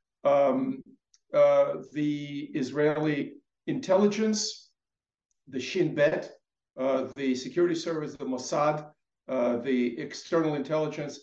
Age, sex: 50-69, male